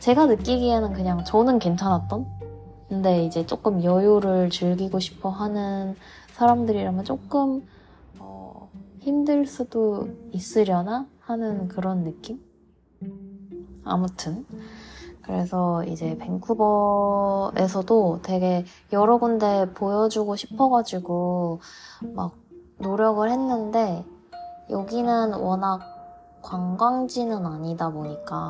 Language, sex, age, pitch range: Korean, female, 20-39, 175-220 Hz